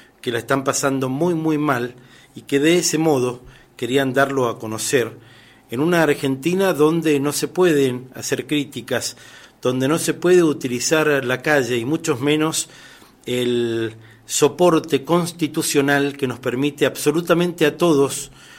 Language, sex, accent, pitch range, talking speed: Spanish, male, Argentinian, 125-155 Hz, 140 wpm